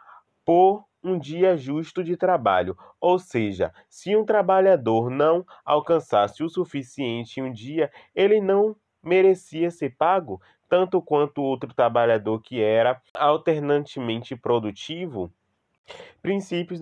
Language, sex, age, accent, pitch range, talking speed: Portuguese, male, 20-39, Brazilian, 125-175 Hz, 115 wpm